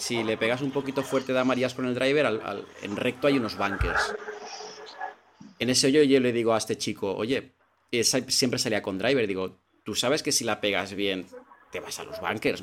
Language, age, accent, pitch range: Spanish, 30-49, Spanish, 110-155 Hz